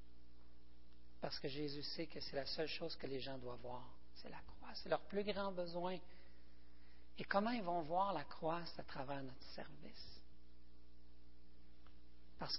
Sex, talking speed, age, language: male, 165 wpm, 40-59, French